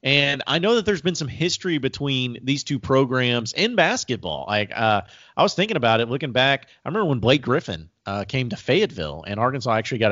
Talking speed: 215 wpm